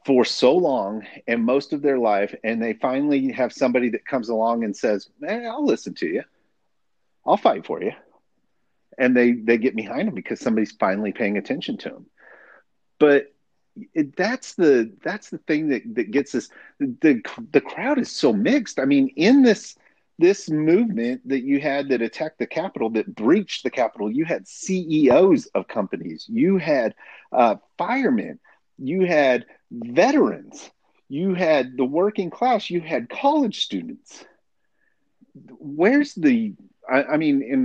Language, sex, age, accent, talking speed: English, male, 40-59, American, 165 wpm